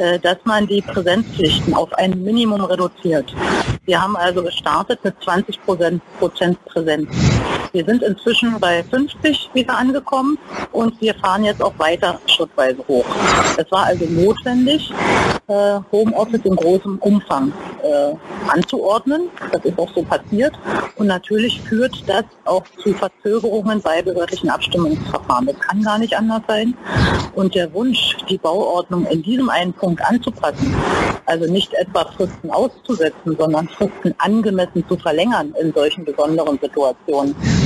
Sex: female